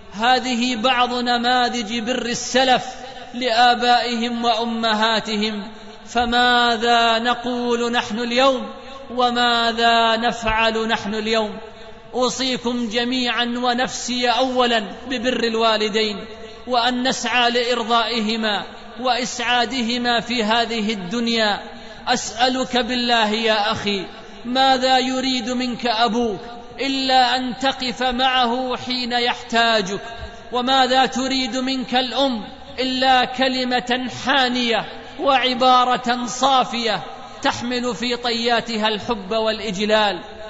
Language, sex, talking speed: Arabic, male, 85 wpm